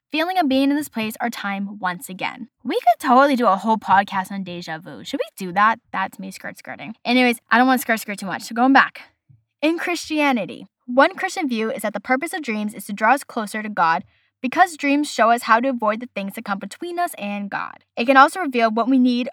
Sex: female